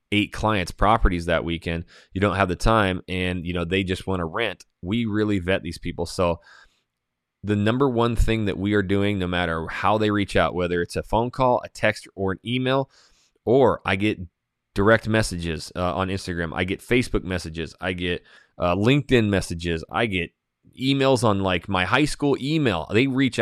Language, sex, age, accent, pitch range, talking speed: English, male, 20-39, American, 90-105 Hz, 195 wpm